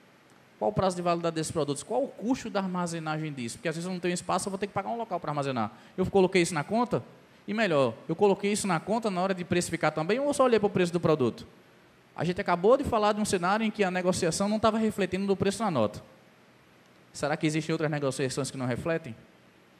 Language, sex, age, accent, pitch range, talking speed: Portuguese, male, 20-39, Brazilian, 130-185 Hz, 245 wpm